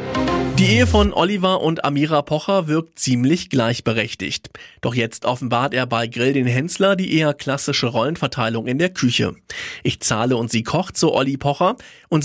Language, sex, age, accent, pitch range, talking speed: German, male, 40-59, German, 125-165 Hz, 170 wpm